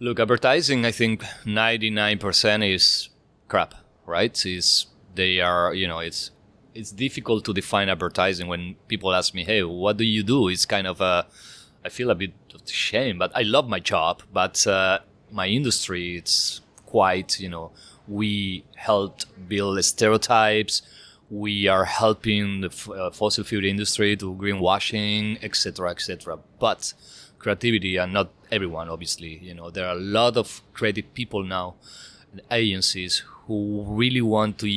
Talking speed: 160 wpm